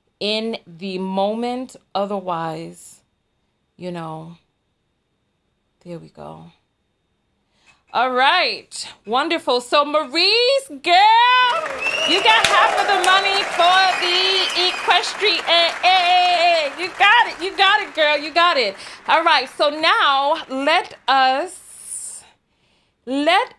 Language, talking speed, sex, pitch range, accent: English, 105 wpm, female, 200-310 Hz, American